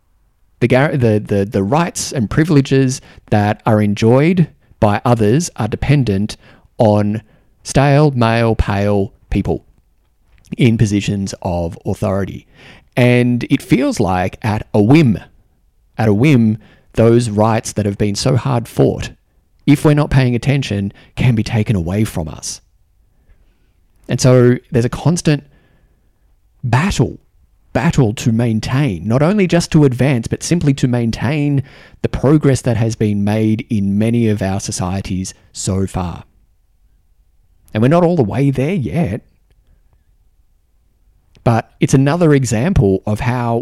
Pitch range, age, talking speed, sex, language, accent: 100-135 Hz, 30-49, 130 wpm, male, English, Australian